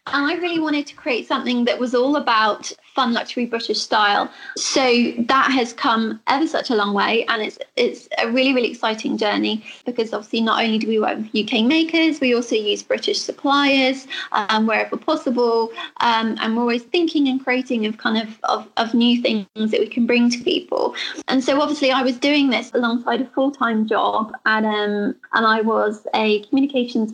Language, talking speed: Spanish, 195 wpm